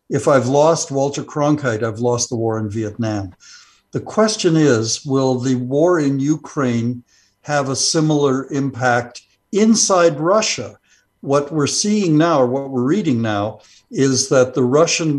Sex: male